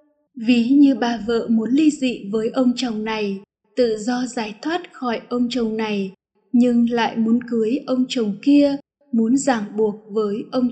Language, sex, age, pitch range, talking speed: Vietnamese, female, 20-39, 230-270 Hz, 175 wpm